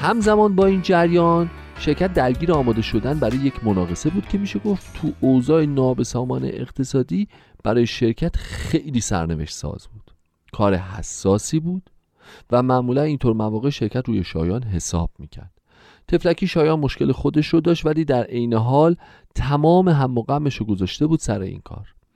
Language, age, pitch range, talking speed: Persian, 40-59, 95-155 Hz, 150 wpm